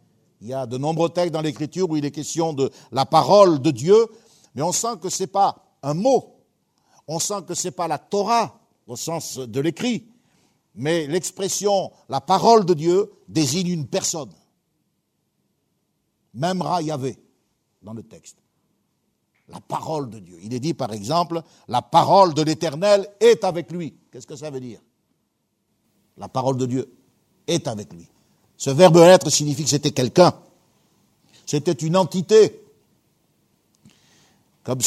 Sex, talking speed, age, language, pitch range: male, 160 wpm, 60-79, French, 120-175 Hz